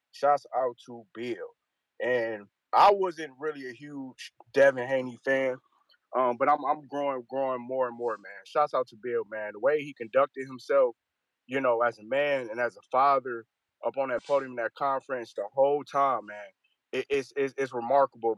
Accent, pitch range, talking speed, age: American, 130-185 Hz, 185 wpm, 20-39